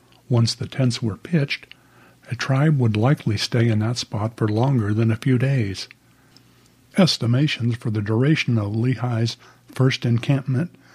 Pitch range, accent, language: 115-140 Hz, American, English